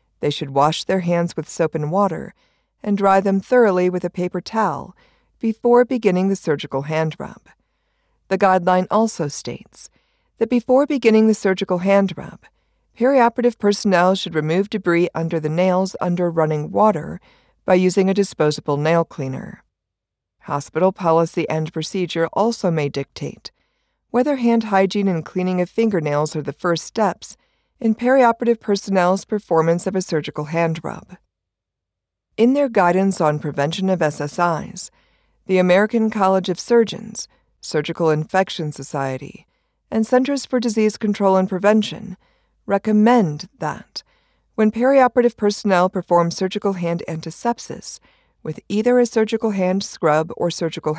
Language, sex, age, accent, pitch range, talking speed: English, female, 50-69, American, 160-220 Hz, 140 wpm